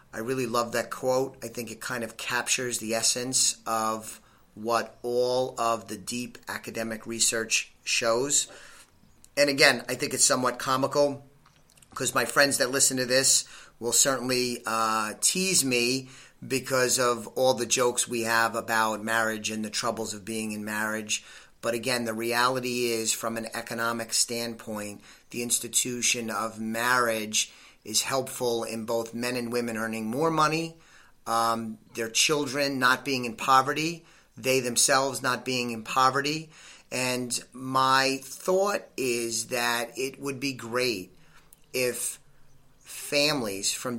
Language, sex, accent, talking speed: English, male, American, 145 wpm